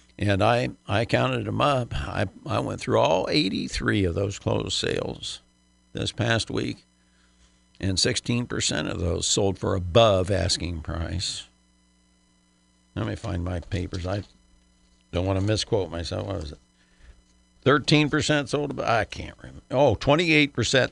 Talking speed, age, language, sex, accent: 140 wpm, 60-79, English, male, American